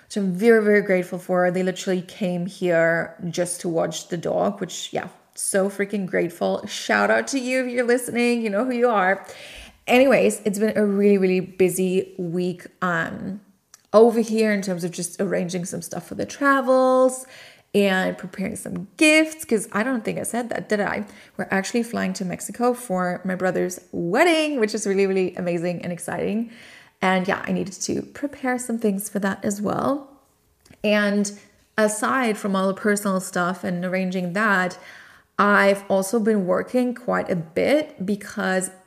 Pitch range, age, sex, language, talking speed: 185-225 Hz, 30-49, female, English, 175 wpm